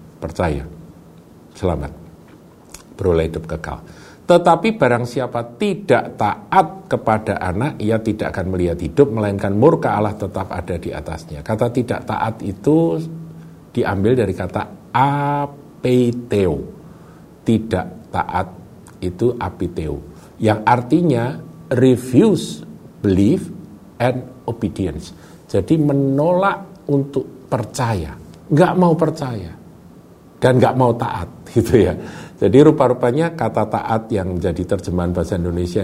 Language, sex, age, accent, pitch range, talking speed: Indonesian, male, 50-69, native, 90-140 Hz, 105 wpm